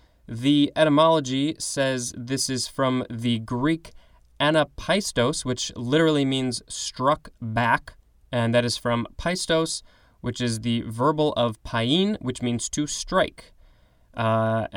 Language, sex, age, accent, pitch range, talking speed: English, male, 20-39, American, 115-150 Hz, 120 wpm